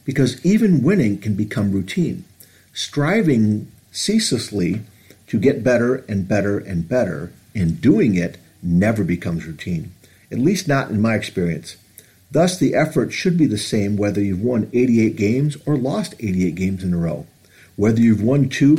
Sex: male